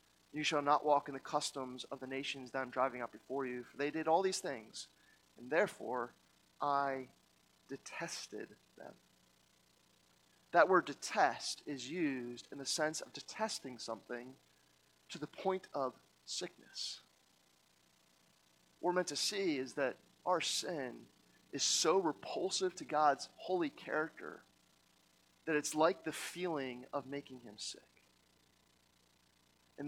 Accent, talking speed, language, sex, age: American, 140 wpm, English, male, 30-49